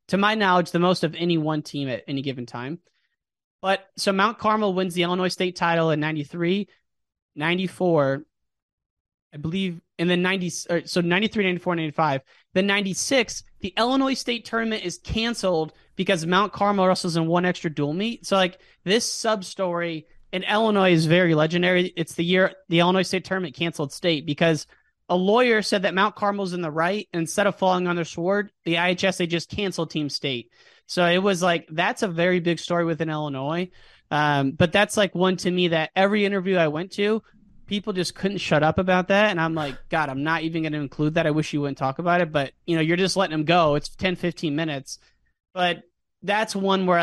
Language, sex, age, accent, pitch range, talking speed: English, male, 30-49, American, 160-195 Hz, 205 wpm